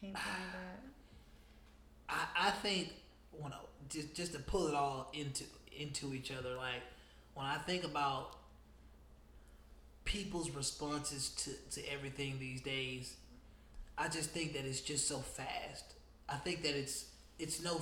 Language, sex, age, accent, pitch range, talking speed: English, male, 20-39, American, 130-170 Hz, 140 wpm